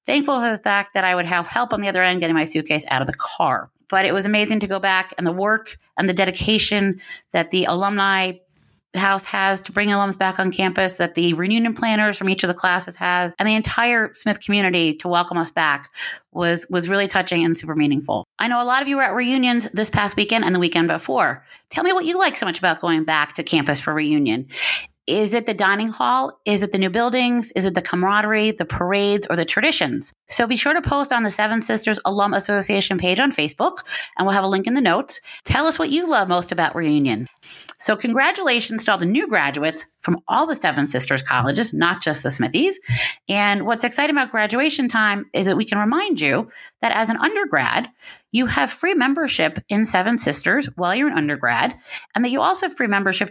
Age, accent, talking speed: 30-49, American, 225 wpm